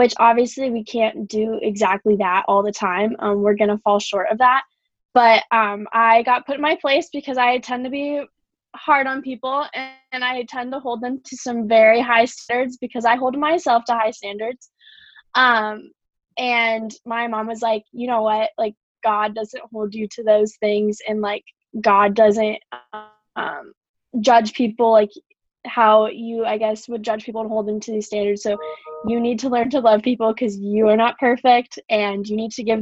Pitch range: 210-250 Hz